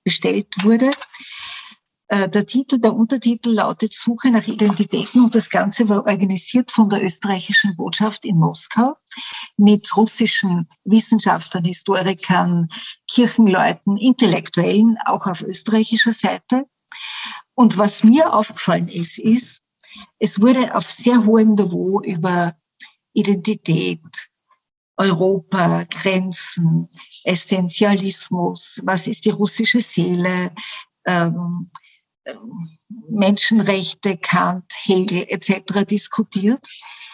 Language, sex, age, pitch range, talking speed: German, female, 50-69, 180-220 Hz, 95 wpm